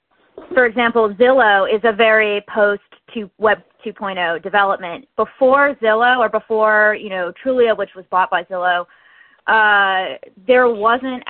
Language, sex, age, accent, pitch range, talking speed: English, female, 20-39, American, 185-230 Hz, 130 wpm